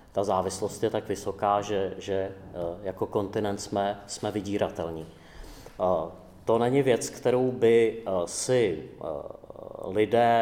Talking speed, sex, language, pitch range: 110 wpm, male, Czech, 100-115 Hz